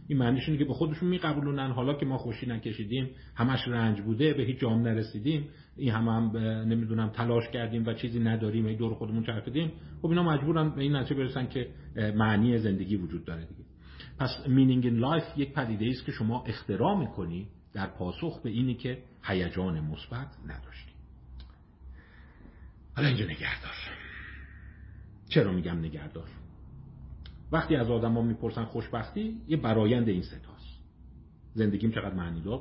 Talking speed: 150 wpm